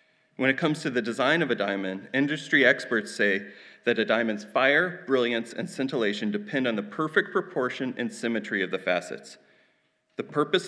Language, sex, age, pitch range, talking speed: English, male, 30-49, 105-145 Hz, 175 wpm